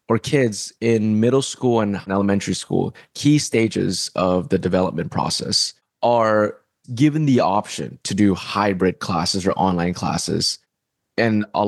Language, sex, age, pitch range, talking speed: English, male, 20-39, 95-115 Hz, 140 wpm